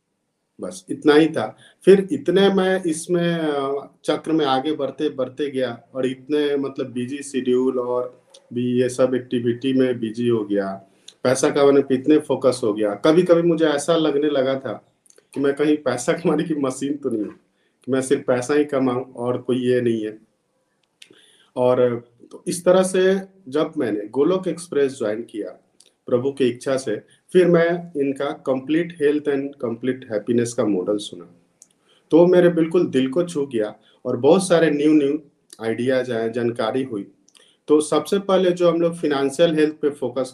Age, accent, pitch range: 50-69, native, 125-160 Hz